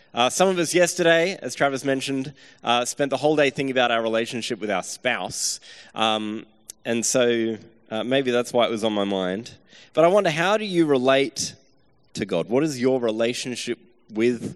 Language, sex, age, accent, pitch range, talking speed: English, male, 20-39, Australian, 115-155 Hz, 190 wpm